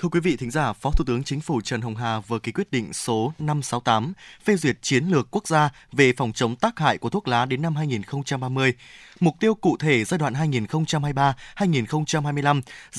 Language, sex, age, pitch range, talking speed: Vietnamese, male, 20-39, 135-175 Hz, 200 wpm